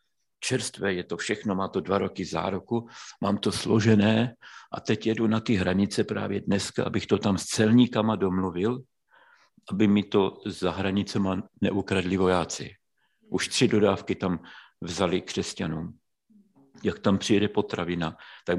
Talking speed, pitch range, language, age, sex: 140 wpm, 85-105 Hz, Slovak, 50-69, male